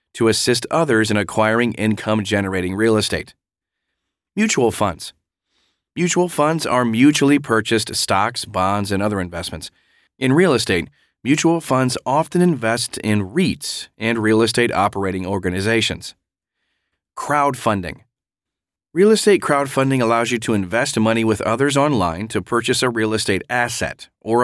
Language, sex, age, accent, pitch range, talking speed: English, male, 30-49, American, 105-135 Hz, 130 wpm